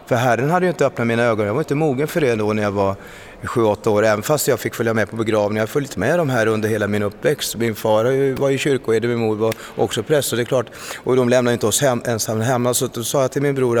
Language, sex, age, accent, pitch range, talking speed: Swedish, male, 30-49, native, 105-130 Hz, 290 wpm